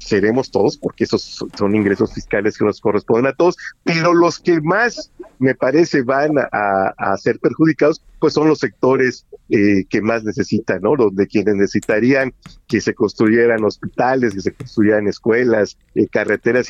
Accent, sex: Mexican, male